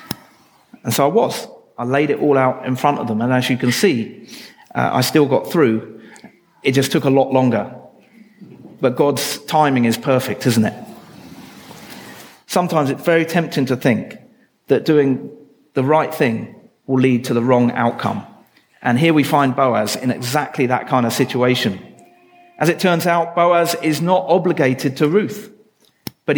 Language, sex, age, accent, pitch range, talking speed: English, male, 40-59, British, 130-165 Hz, 170 wpm